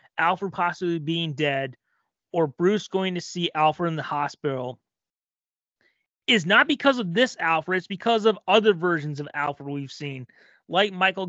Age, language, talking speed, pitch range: 30-49, English, 160 wpm, 145-200 Hz